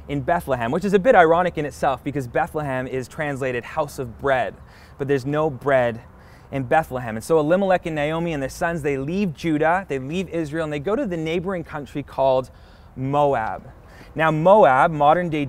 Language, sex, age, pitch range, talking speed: English, male, 20-39, 125-160 Hz, 185 wpm